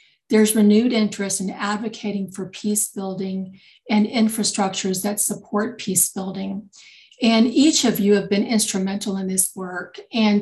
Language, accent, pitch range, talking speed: English, American, 195-220 Hz, 145 wpm